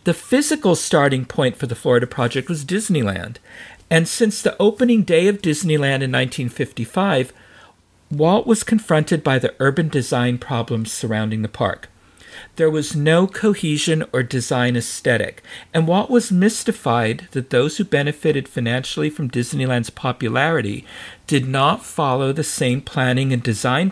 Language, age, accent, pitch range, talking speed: English, 50-69, American, 125-175 Hz, 145 wpm